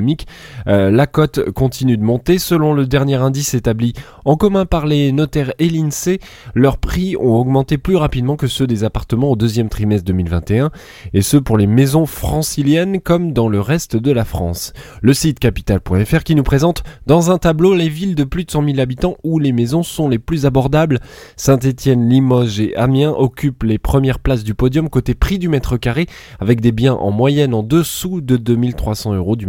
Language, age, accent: French, 20-39, French